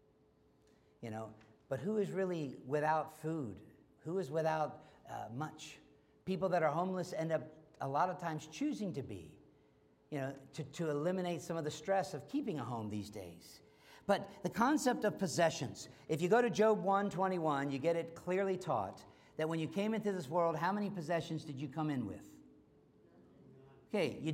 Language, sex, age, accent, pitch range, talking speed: English, male, 50-69, American, 155-220 Hz, 185 wpm